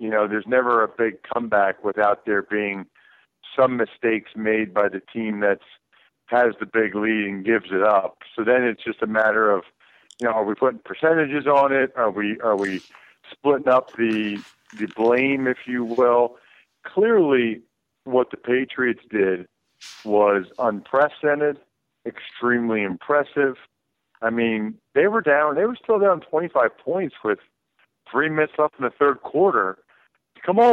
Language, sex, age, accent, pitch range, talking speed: English, male, 50-69, American, 105-135 Hz, 160 wpm